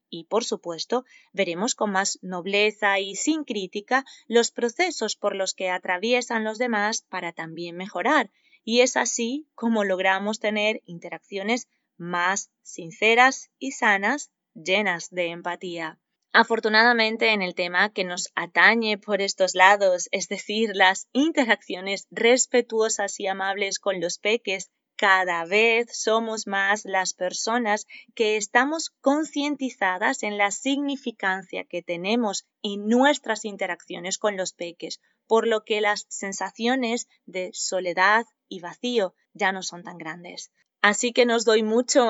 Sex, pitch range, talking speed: female, 190-230 Hz, 135 wpm